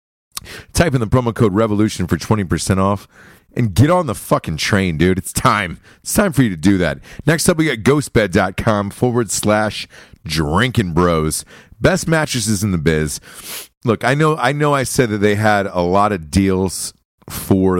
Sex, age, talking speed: male, 40-59, 180 wpm